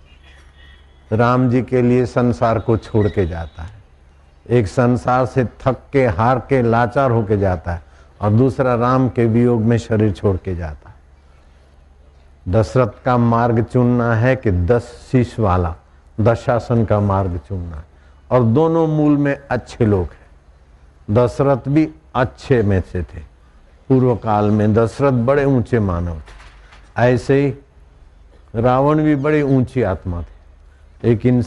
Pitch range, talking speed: 80-130 Hz, 145 wpm